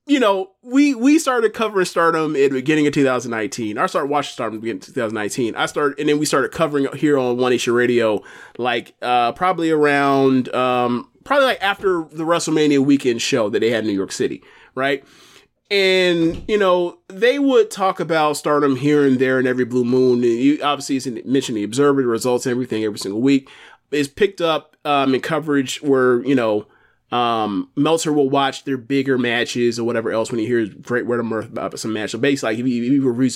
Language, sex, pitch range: English, male, 125-165 Hz